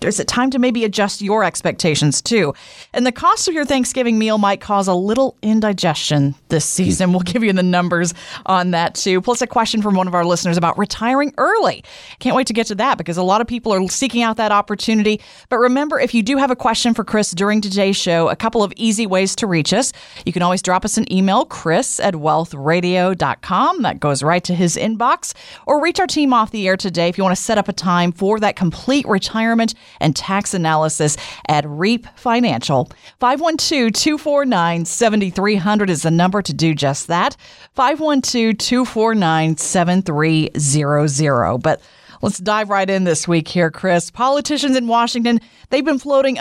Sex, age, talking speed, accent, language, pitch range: female, 30-49, 185 wpm, American, English, 175-240 Hz